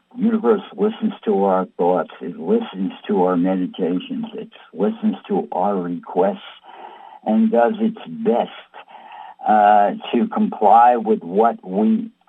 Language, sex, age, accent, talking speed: English, male, 60-79, American, 120 wpm